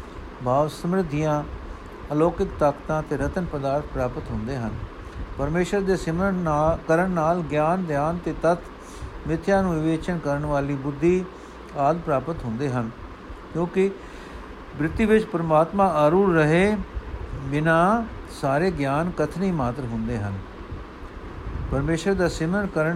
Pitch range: 130-170 Hz